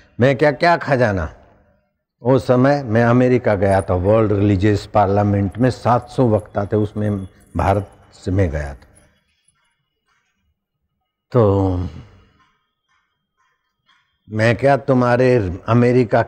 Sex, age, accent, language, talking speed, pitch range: male, 60-79, native, Hindi, 105 wpm, 100-135 Hz